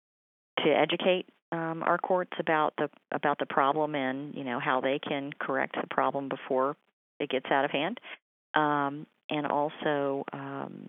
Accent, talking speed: American, 160 wpm